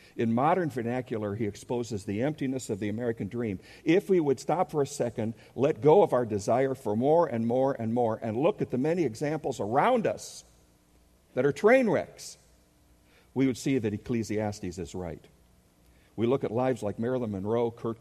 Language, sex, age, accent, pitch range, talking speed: English, male, 60-79, American, 105-135 Hz, 185 wpm